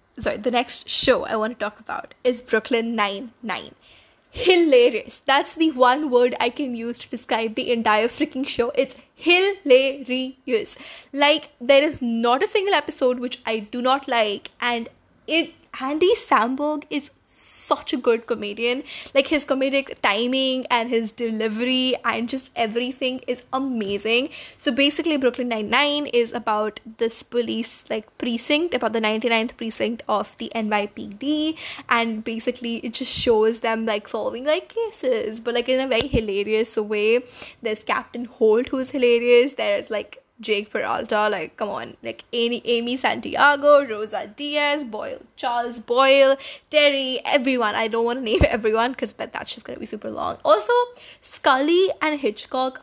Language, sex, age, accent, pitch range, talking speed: English, female, 10-29, Indian, 230-290 Hz, 155 wpm